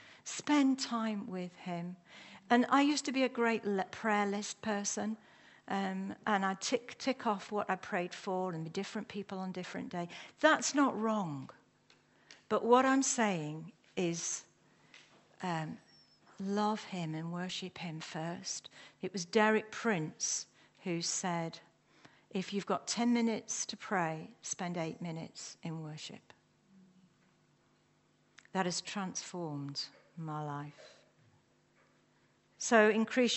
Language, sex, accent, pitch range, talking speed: English, female, British, 175-220 Hz, 130 wpm